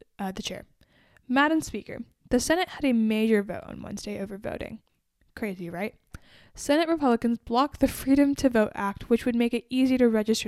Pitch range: 210-245 Hz